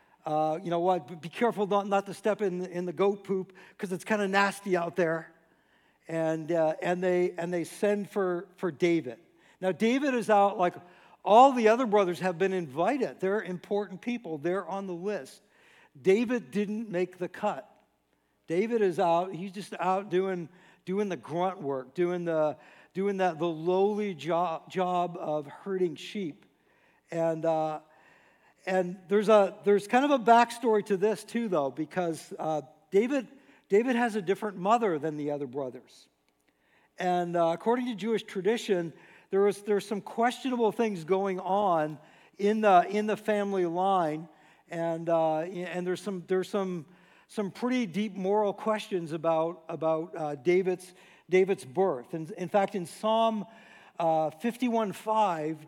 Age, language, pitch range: 60-79, English, 170-205 Hz